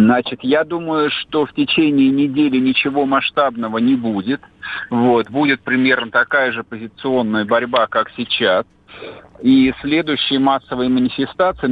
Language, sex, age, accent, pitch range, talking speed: Russian, male, 50-69, native, 130-165 Hz, 125 wpm